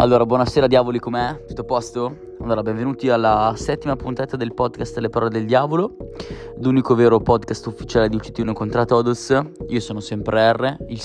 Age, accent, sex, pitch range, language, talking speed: 20-39, native, male, 105-120 Hz, Italian, 170 wpm